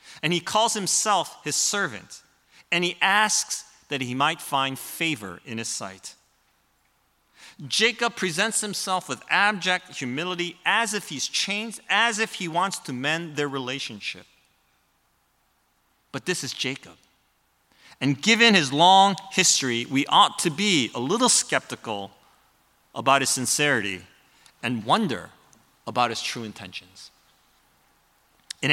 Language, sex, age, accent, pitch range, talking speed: English, male, 30-49, American, 135-190 Hz, 125 wpm